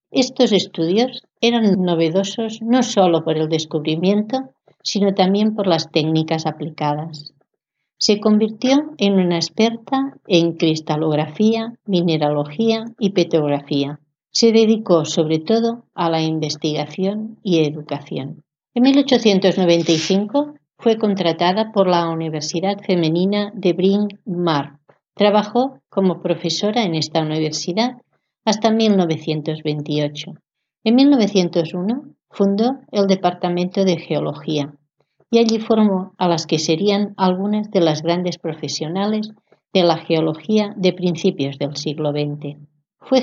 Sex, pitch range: female, 155-210 Hz